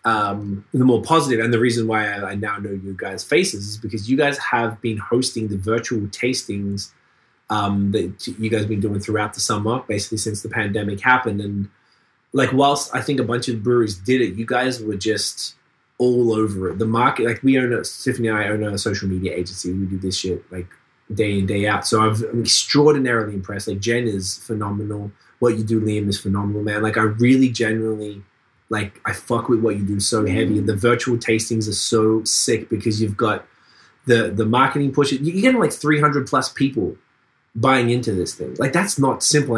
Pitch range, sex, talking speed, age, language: 100-120 Hz, male, 210 wpm, 20-39, English